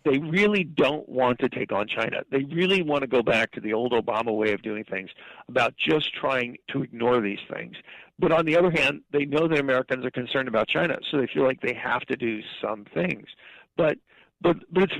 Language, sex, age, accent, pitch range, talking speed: English, male, 50-69, American, 120-155 Hz, 225 wpm